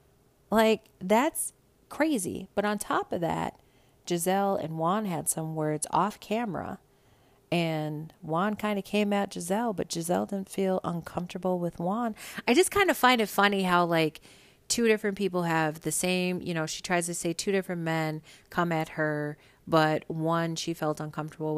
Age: 30-49